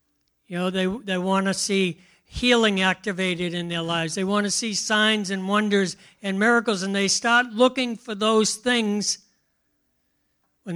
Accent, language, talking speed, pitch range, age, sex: American, English, 160 wpm, 190-225 Hz, 60-79, male